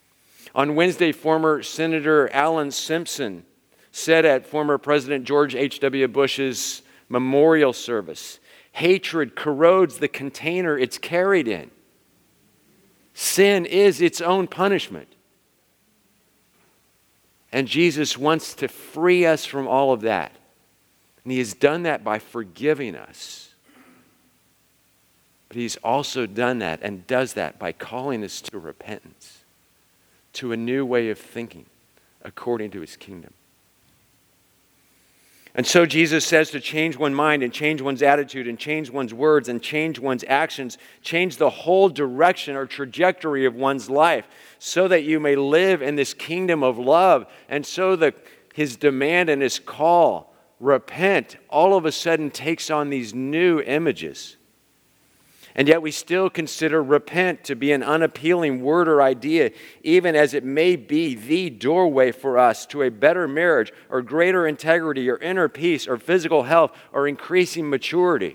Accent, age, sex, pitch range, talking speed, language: American, 50-69, male, 135-165 Hz, 145 wpm, English